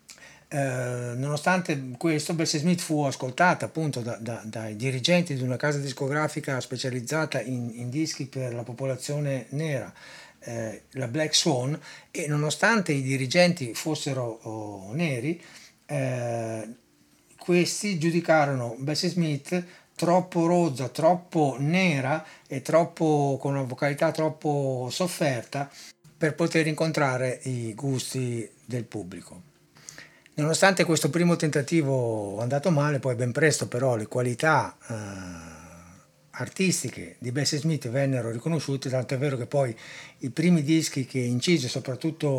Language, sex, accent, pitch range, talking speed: Italian, male, native, 120-155 Hz, 125 wpm